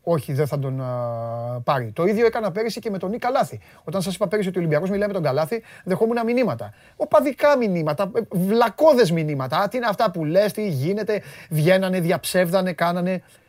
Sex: male